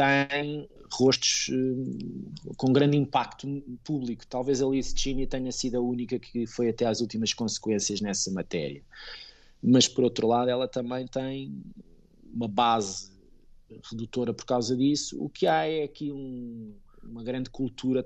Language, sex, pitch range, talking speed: Portuguese, male, 115-140 Hz, 150 wpm